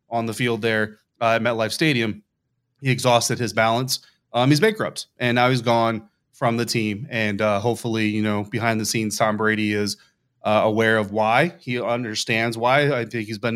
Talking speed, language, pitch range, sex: 190 wpm, English, 115-140 Hz, male